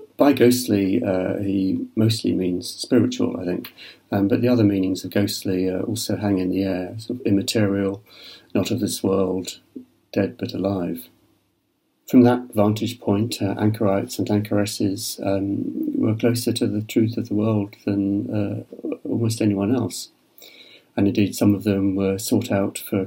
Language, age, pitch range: English, 40-59, 95-110 Hz